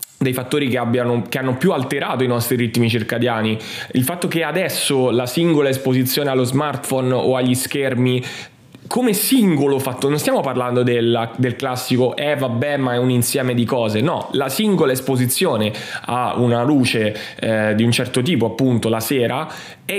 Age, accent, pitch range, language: 20-39, native, 120-145 Hz, Italian